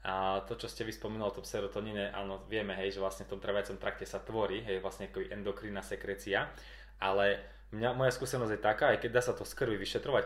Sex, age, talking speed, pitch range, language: male, 20-39, 210 wpm, 100-125 Hz, Slovak